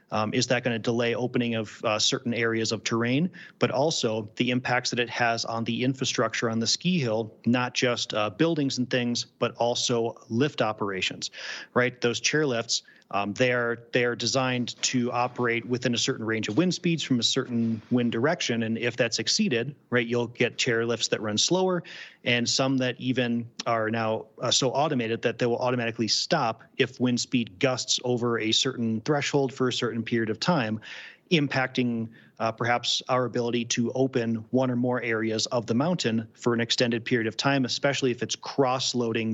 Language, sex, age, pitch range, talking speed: English, male, 30-49, 115-130 Hz, 190 wpm